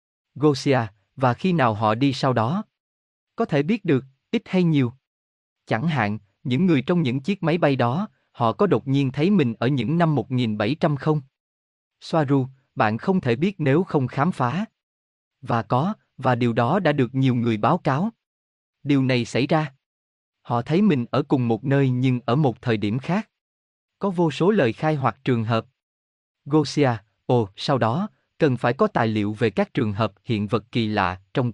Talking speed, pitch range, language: 190 wpm, 110-155 Hz, Vietnamese